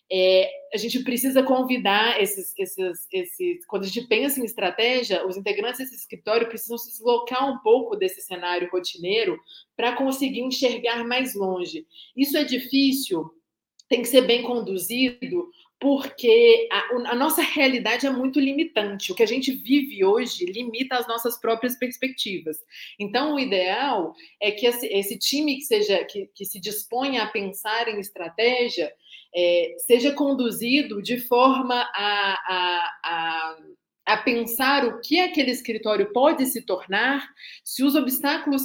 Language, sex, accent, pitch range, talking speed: Portuguese, female, Brazilian, 205-265 Hz, 145 wpm